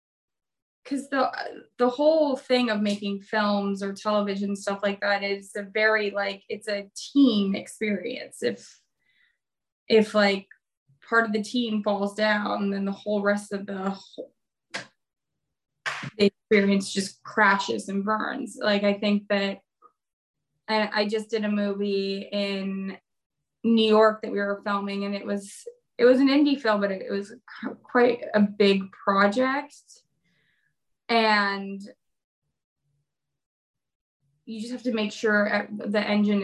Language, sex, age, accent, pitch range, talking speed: English, female, 20-39, American, 195-215 Hz, 140 wpm